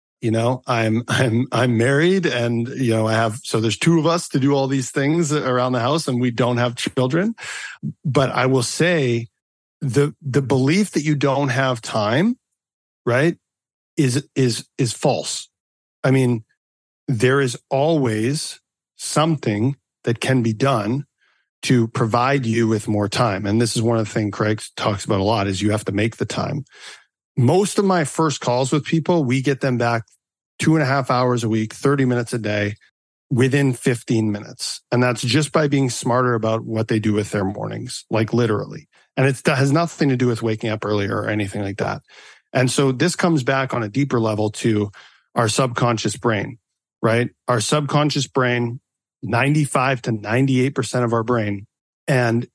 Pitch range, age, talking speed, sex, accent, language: 115-140 Hz, 40-59, 180 wpm, male, American, English